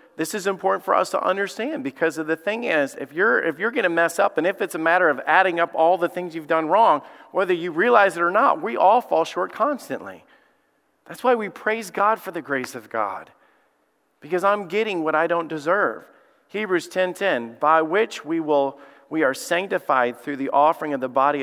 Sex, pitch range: male, 135-180 Hz